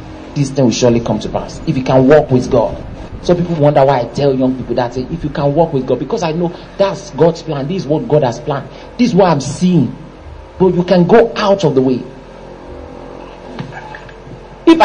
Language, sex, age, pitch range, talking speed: English, male, 50-69, 140-205 Hz, 220 wpm